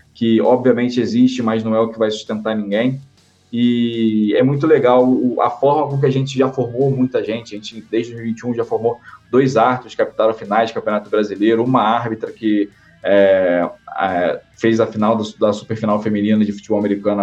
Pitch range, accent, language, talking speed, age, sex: 110-130 Hz, Brazilian, Portuguese, 190 wpm, 20-39, male